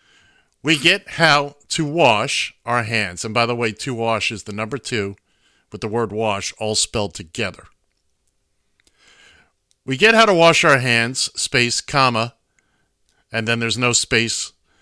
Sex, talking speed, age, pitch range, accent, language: male, 155 wpm, 50-69, 110-145 Hz, American, English